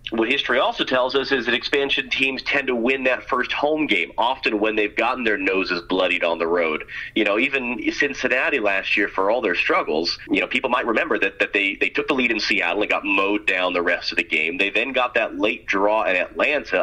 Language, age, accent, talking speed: English, 30-49, American, 240 wpm